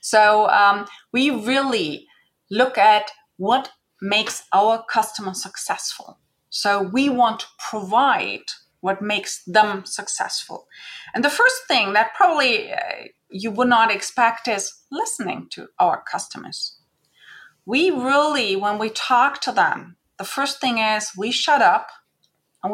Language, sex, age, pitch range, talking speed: English, female, 30-49, 215-265 Hz, 135 wpm